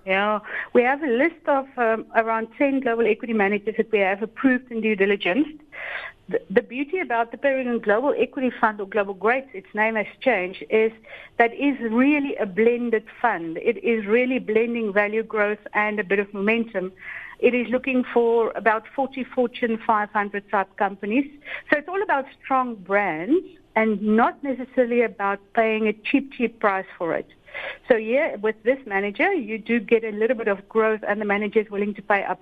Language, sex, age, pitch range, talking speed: English, female, 60-79, 210-255 Hz, 185 wpm